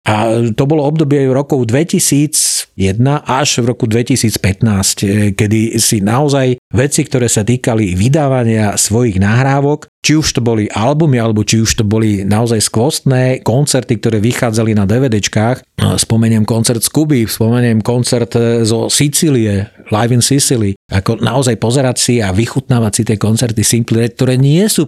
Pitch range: 110-125 Hz